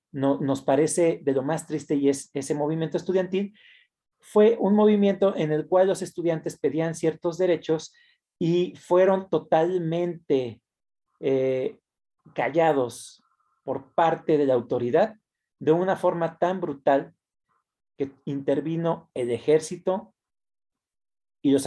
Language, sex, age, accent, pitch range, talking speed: Spanish, male, 40-59, Mexican, 140-190 Hz, 120 wpm